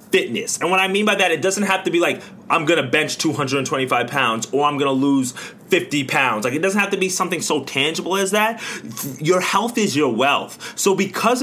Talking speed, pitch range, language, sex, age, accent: 230 wpm, 135-190 Hz, English, male, 20-39, American